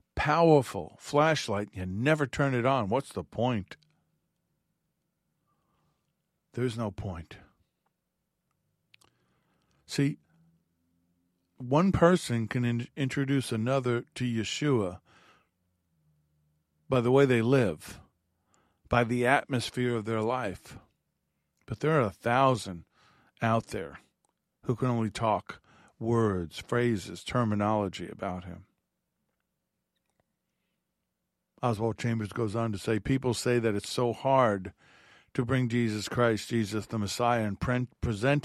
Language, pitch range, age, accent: English, 105-135 Hz, 50-69, American